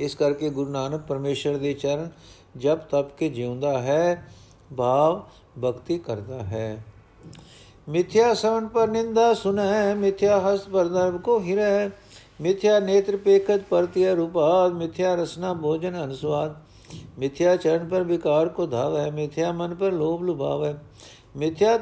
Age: 50-69